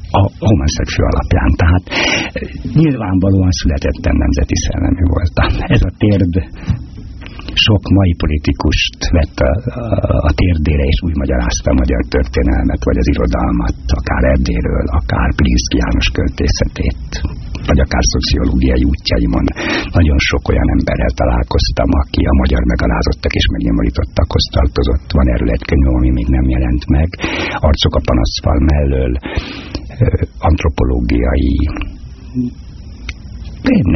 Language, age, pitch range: Hungarian, 60-79, 70-90 Hz